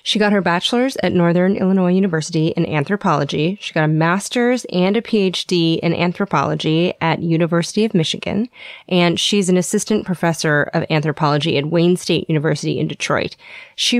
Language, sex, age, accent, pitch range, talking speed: English, female, 30-49, American, 165-210 Hz, 160 wpm